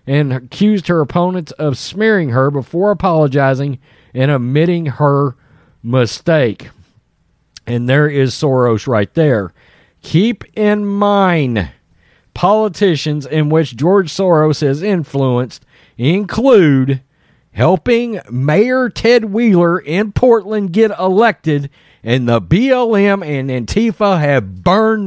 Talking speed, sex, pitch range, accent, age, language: 110 wpm, male, 135-200 Hz, American, 40-59, English